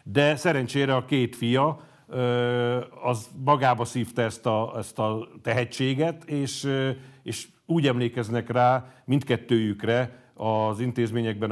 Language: Hungarian